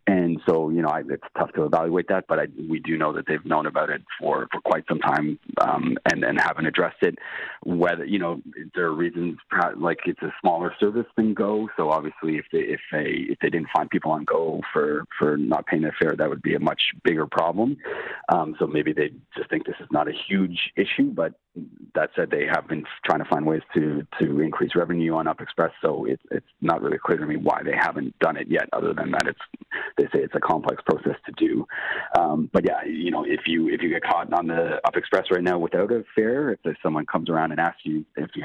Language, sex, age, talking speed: English, male, 40-59, 240 wpm